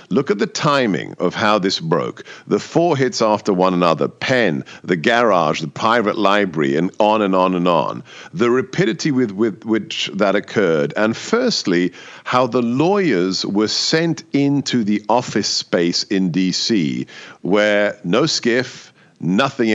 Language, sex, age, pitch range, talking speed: English, male, 50-69, 100-130 Hz, 150 wpm